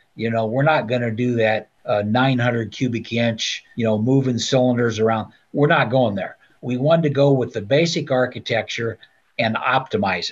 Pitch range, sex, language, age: 110-140 Hz, male, English, 60-79